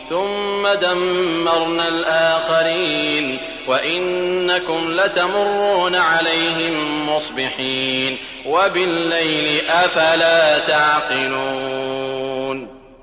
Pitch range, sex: 135-170 Hz, male